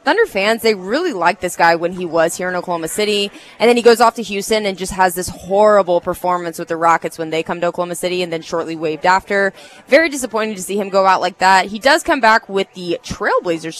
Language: English